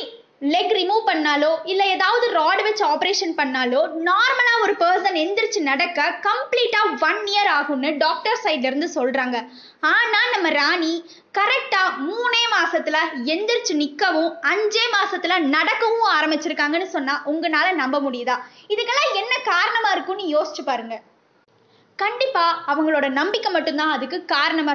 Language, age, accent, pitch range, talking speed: Tamil, 20-39, native, 295-420 Hz, 115 wpm